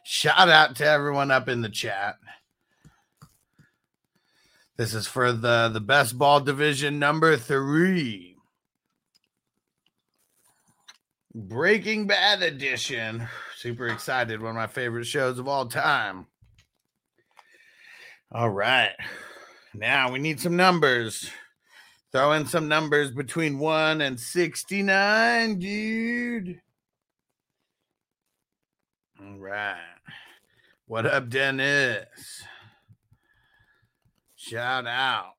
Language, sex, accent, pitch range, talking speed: English, male, American, 135-180 Hz, 90 wpm